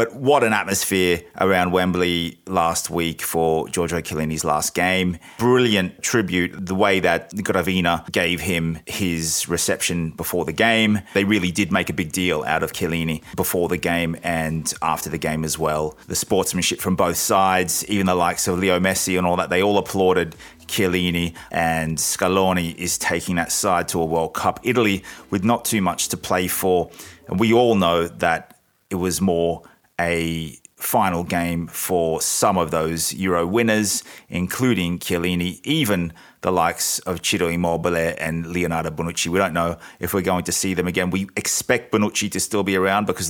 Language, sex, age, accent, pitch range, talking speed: English, male, 30-49, Australian, 85-100 Hz, 175 wpm